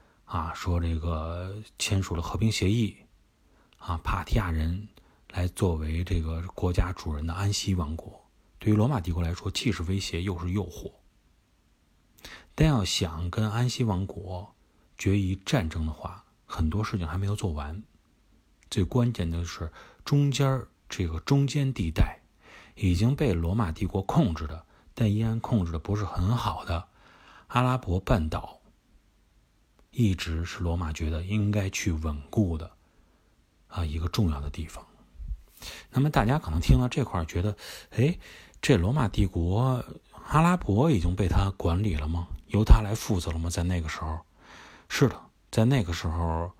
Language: Chinese